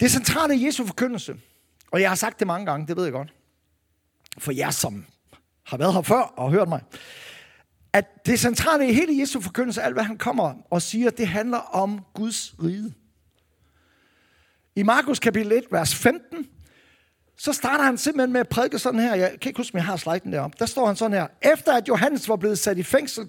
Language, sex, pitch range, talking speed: Danish, male, 185-260 Hz, 200 wpm